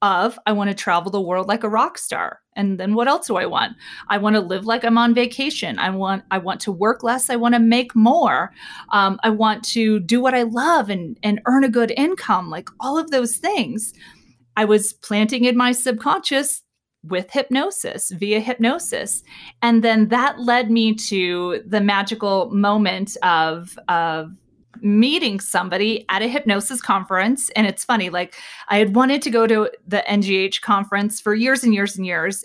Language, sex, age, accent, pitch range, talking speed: English, female, 30-49, American, 190-235 Hz, 190 wpm